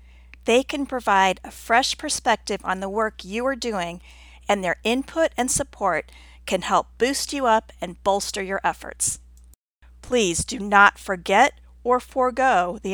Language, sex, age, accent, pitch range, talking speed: English, female, 40-59, American, 175-225 Hz, 155 wpm